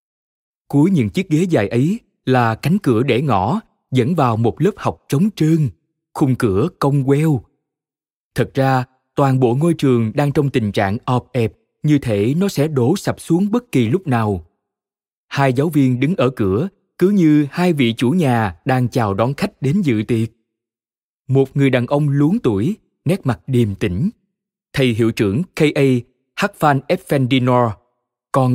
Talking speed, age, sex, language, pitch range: 170 wpm, 20-39, male, Vietnamese, 120-165 Hz